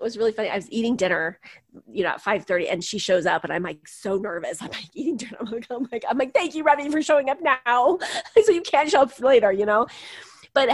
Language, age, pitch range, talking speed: English, 30-49, 185-235 Hz, 270 wpm